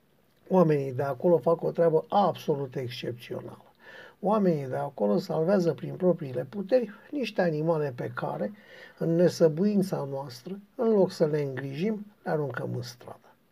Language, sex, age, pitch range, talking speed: Romanian, male, 50-69, 155-195 Hz, 140 wpm